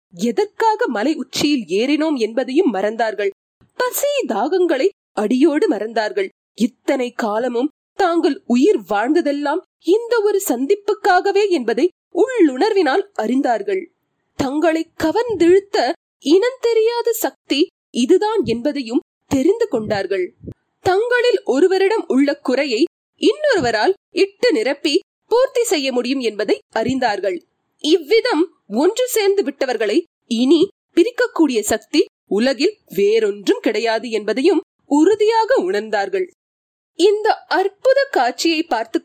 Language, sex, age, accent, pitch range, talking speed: Tamil, female, 20-39, native, 255-400 Hz, 70 wpm